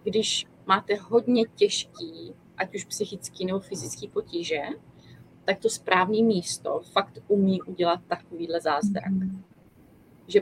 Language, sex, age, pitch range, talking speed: Czech, female, 30-49, 175-210 Hz, 115 wpm